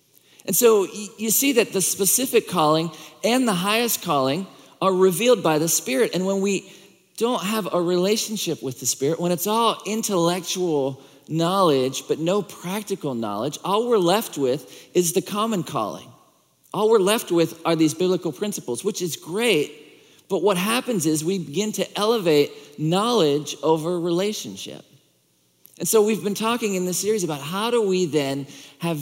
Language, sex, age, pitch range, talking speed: English, male, 40-59, 155-195 Hz, 165 wpm